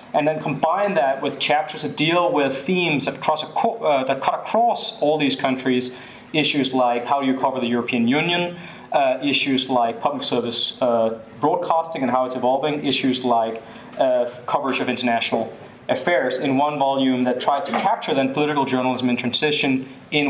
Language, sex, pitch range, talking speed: English, male, 125-150 Hz, 175 wpm